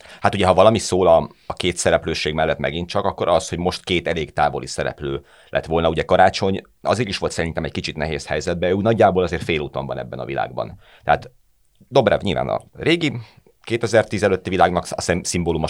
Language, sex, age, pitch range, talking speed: Hungarian, male, 30-49, 75-100 Hz, 185 wpm